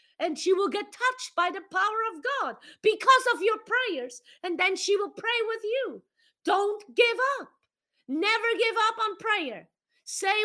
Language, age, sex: English, 30-49, female